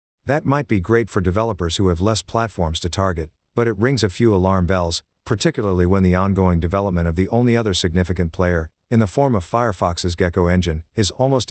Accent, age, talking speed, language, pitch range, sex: American, 50-69, 205 wpm, English, 90-115 Hz, male